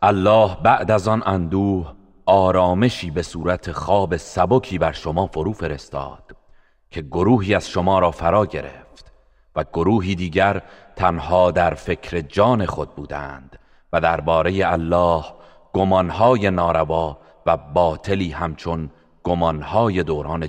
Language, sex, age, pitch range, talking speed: Arabic, male, 40-59, 80-100 Hz, 115 wpm